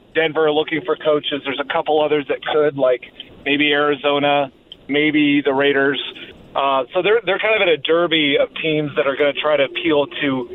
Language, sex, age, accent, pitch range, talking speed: English, male, 30-49, American, 145-170 Hz, 200 wpm